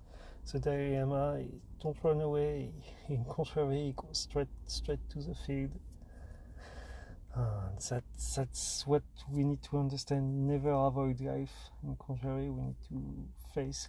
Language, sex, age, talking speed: English, male, 40-59, 140 wpm